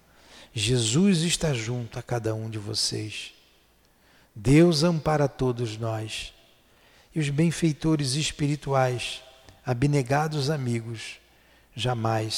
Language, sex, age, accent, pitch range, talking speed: Portuguese, male, 50-69, Brazilian, 105-130 Hz, 90 wpm